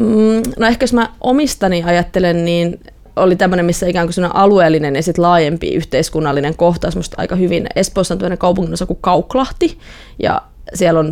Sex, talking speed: female, 155 wpm